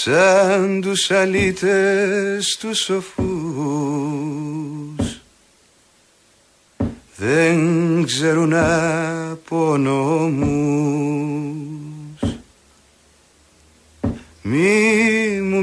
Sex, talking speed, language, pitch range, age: male, 40 wpm, Greek, 145-210 Hz, 40-59